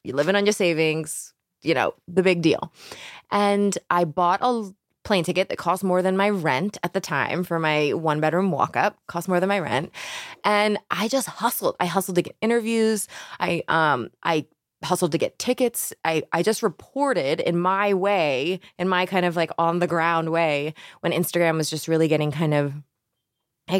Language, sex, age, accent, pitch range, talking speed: English, female, 20-39, American, 165-200 Hz, 190 wpm